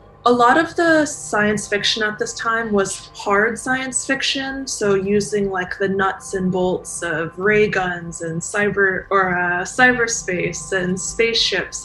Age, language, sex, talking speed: 20-39, English, female, 150 wpm